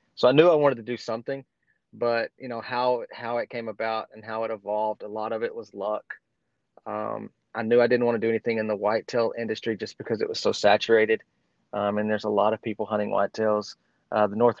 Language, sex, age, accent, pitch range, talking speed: English, male, 30-49, American, 110-130 Hz, 235 wpm